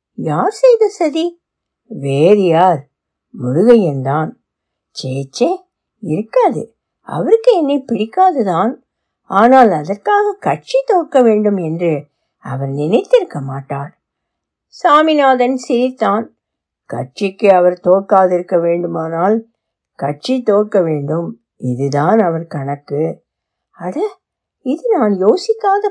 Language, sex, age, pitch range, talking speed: Tamil, female, 60-79, 170-245 Hz, 85 wpm